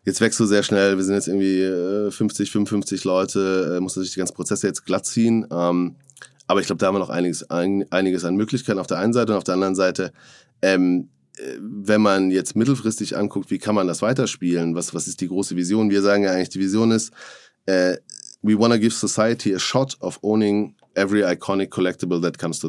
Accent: German